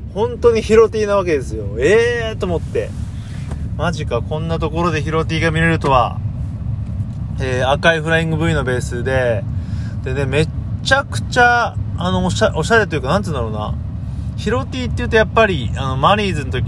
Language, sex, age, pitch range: Japanese, male, 30-49, 100-125 Hz